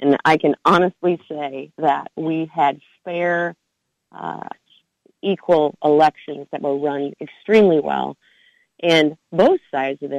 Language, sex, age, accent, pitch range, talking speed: English, female, 30-49, American, 145-180 Hz, 130 wpm